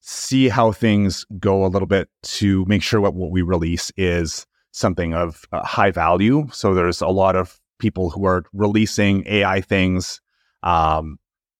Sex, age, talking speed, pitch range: male, 30-49, 165 wpm, 85-105 Hz